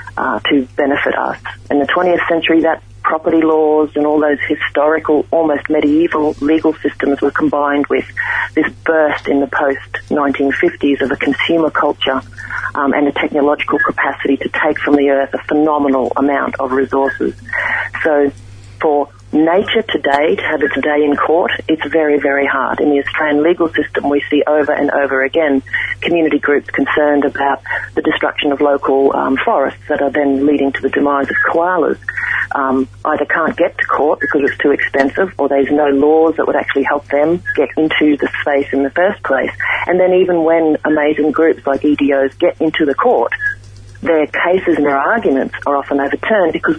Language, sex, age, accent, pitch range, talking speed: English, female, 40-59, Australian, 140-155 Hz, 175 wpm